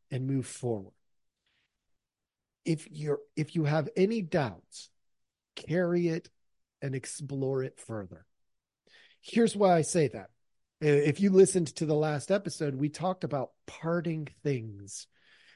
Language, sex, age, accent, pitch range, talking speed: English, male, 40-59, American, 140-180 Hz, 125 wpm